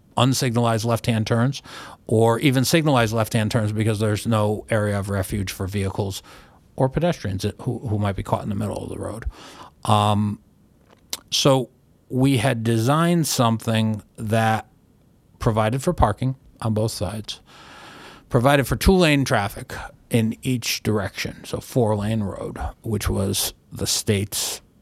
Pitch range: 100-125 Hz